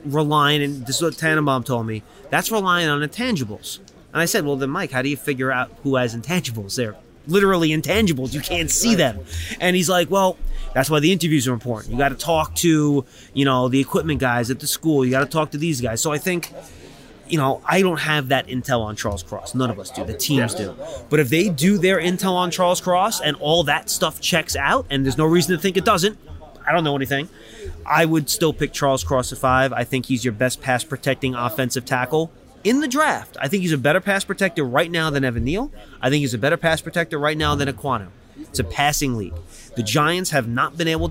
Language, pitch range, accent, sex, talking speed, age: English, 125-170 Hz, American, male, 240 wpm, 30-49